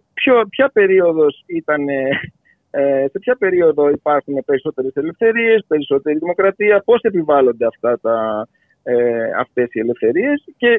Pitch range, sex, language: 145-200 Hz, male, Greek